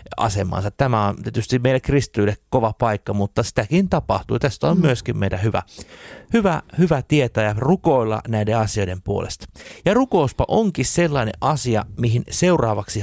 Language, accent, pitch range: Finnish, native, 100-135 Hz